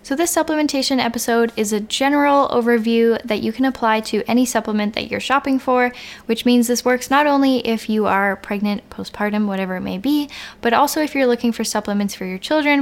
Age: 10-29